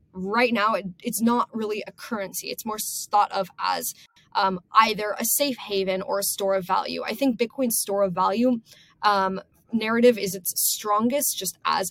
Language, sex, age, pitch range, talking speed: English, female, 10-29, 195-245 Hz, 175 wpm